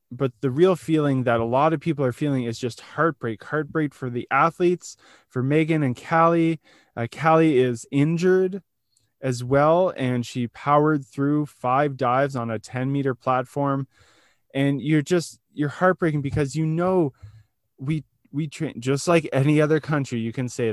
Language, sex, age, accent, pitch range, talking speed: English, male, 20-39, American, 120-155 Hz, 170 wpm